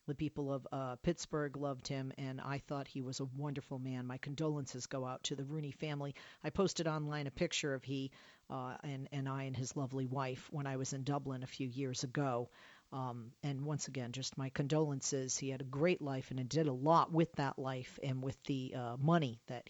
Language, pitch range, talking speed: English, 140-175 Hz, 220 wpm